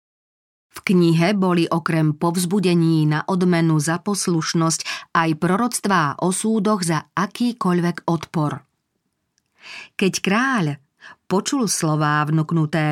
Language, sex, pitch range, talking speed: Slovak, female, 160-200 Hz, 100 wpm